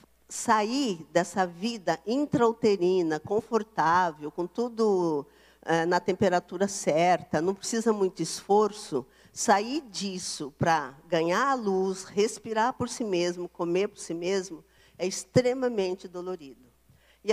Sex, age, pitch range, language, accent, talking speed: female, 50-69, 175-230 Hz, Portuguese, Brazilian, 110 wpm